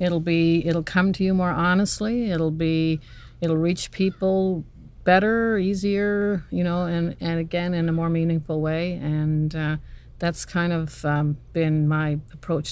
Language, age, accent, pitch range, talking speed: English, 50-69, American, 145-170 Hz, 160 wpm